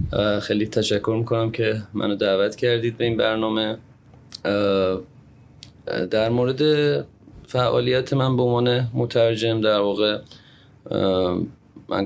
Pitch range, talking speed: 95-110 Hz, 95 wpm